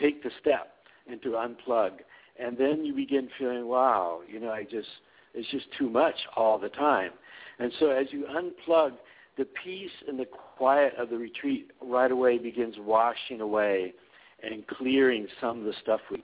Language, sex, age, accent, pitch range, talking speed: English, male, 60-79, American, 115-140 Hz, 175 wpm